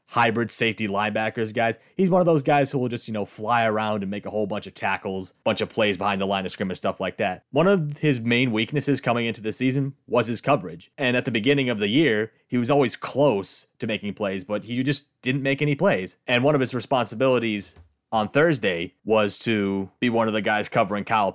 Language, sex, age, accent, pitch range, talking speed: English, male, 30-49, American, 105-130 Hz, 235 wpm